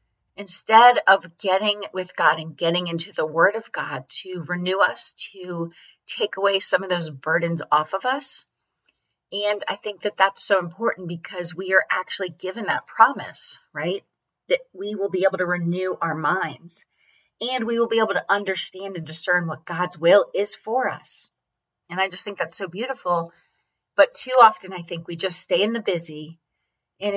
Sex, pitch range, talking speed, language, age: female, 170-215 Hz, 185 wpm, English, 30-49